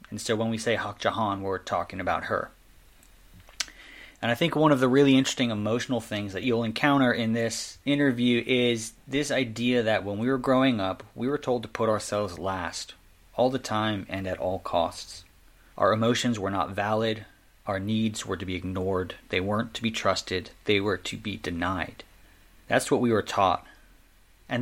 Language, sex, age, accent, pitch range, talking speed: English, male, 30-49, American, 100-120 Hz, 190 wpm